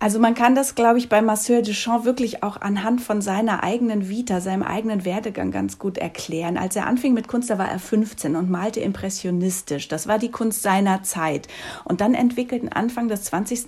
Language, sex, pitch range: German, female, 190-240 Hz